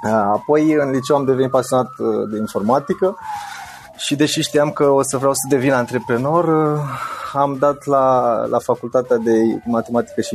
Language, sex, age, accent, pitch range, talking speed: Romanian, male, 20-39, native, 115-140 Hz, 150 wpm